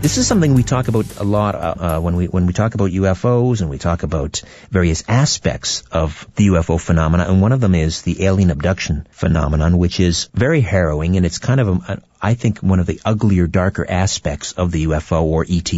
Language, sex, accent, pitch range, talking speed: English, male, American, 85-115 Hz, 225 wpm